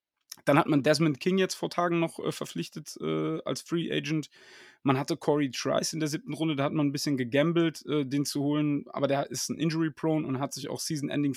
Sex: male